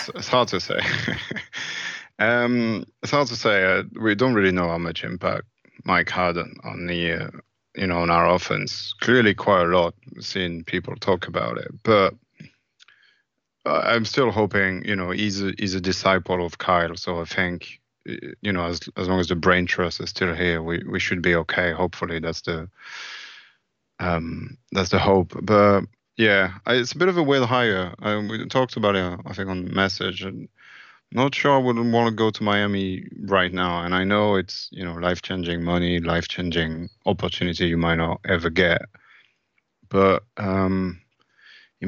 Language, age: English, 20-39